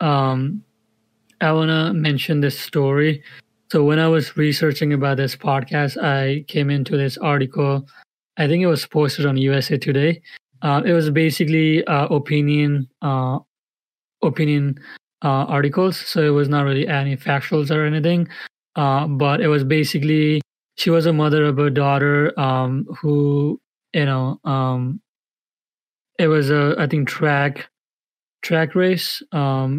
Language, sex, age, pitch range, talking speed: English, male, 30-49, 140-160 Hz, 145 wpm